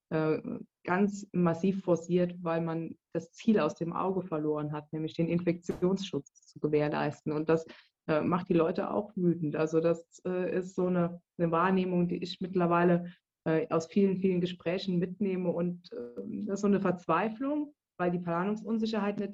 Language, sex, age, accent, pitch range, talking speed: German, female, 20-39, German, 165-190 Hz, 150 wpm